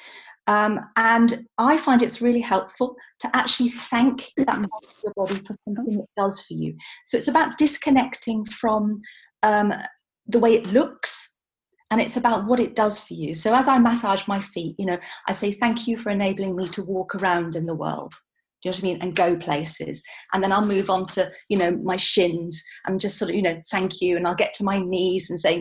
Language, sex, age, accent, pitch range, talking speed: English, female, 40-59, British, 185-235 Hz, 215 wpm